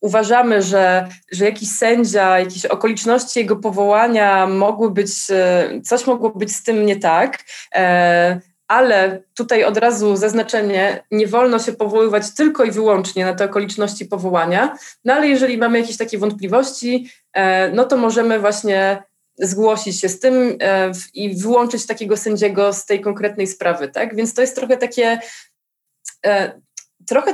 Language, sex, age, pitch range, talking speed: Polish, female, 20-39, 195-245 Hz, 140 wpm